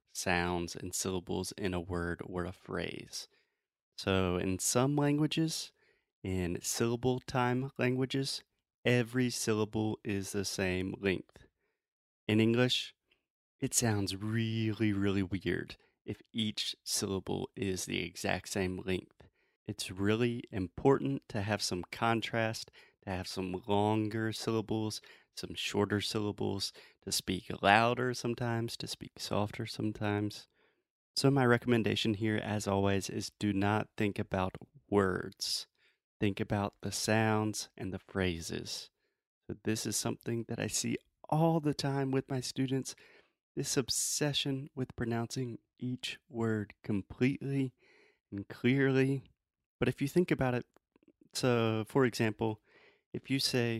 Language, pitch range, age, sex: Portuguese, 100-125 Hz, 30-49, male